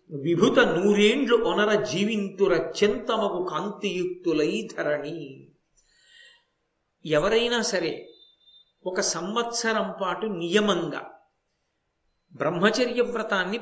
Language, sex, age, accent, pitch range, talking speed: Telugu, male, 50-69, native, 175-235 Hz, 65 wpm